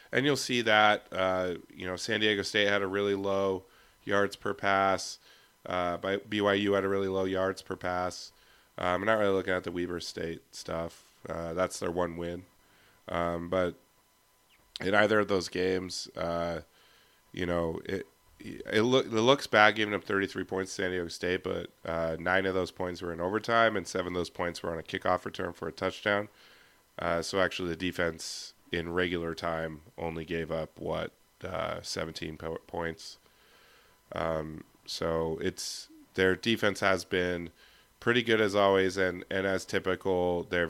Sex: male